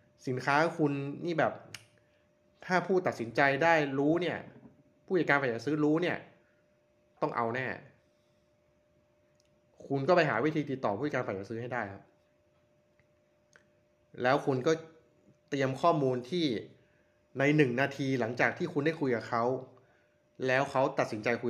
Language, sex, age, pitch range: Thai, male, 20-39, 115-150 Hz